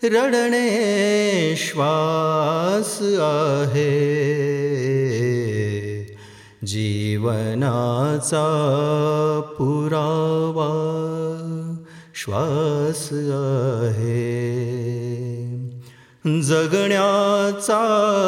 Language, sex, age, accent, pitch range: Marathi, male, 30-49, native, 130-160 Hz